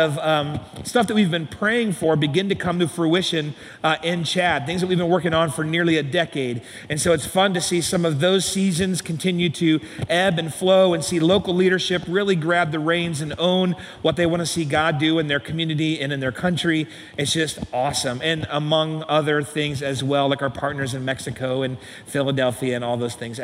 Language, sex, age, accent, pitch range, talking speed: English, male, 40-59, American, 140-180 Hz, 215 wpm